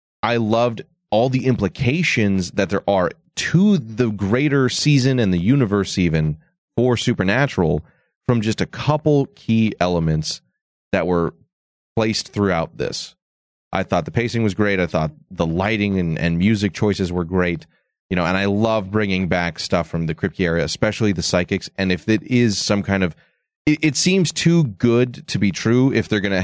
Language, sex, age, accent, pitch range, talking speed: English, male, 30-49, American, 90-120 Hz, 180 wpm